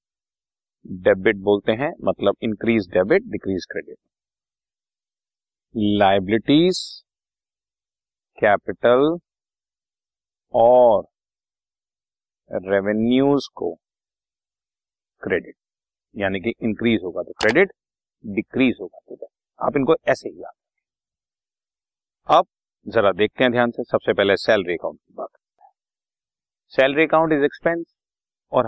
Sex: male